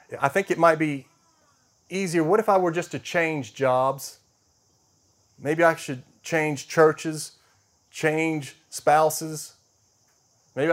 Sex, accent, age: male, American, 40-59